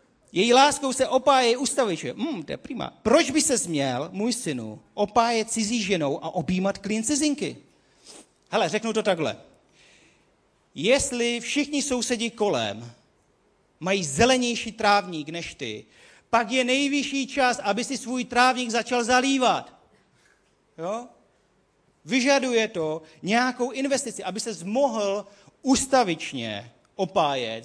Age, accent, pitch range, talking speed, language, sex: 40-59, native, 145-230 Hz, 115 wpm, Czech, male